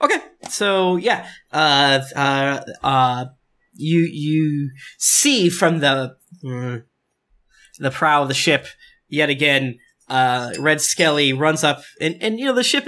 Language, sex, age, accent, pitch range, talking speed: English, male, 20-39, American, 135-180 Hz, 140 wpm